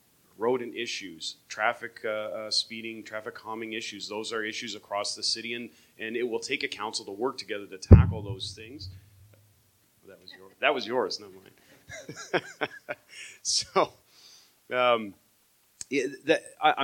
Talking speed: 150 wpm